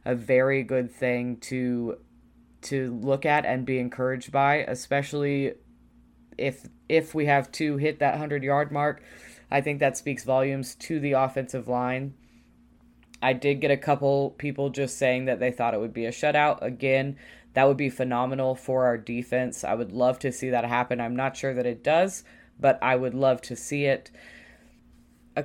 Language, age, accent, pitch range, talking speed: English, 20-39, American, 120-140 Hz, 180 wpm